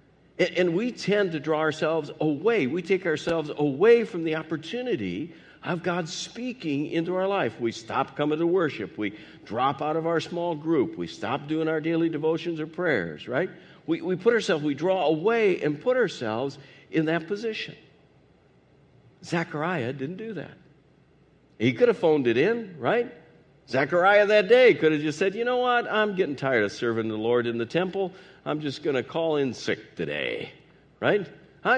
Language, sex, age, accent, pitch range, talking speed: English, male, 60-79, American, 140-195 Hz, 180 wpm